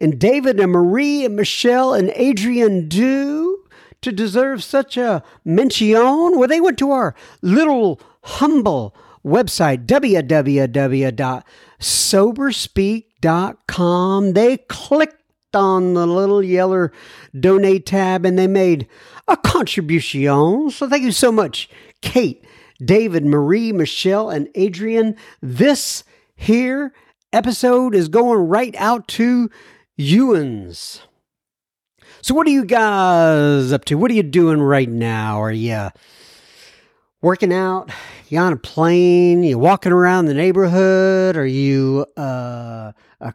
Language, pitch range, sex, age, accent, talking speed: English, 160-225 Hz, male, 50-69, American, 120 wpm